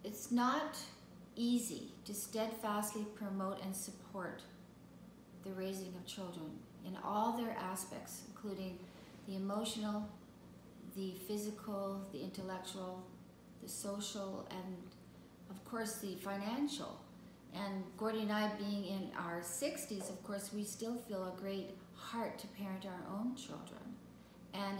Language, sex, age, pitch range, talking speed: English, female, 40-59, 185-210 Hz, 125 wpm